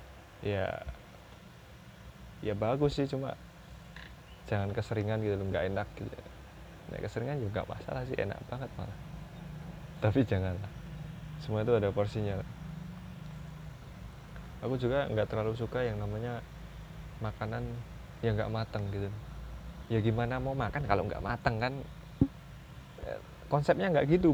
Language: Indonesian